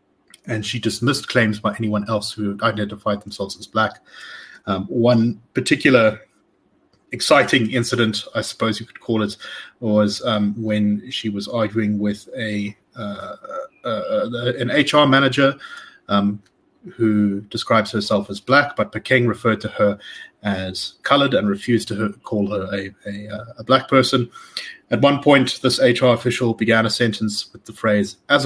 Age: 30-49